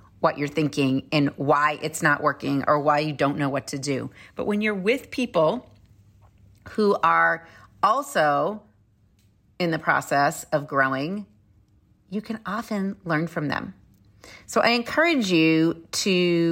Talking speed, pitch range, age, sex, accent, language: 145 wpm, 140-195 Hz, 30-49, female, American, English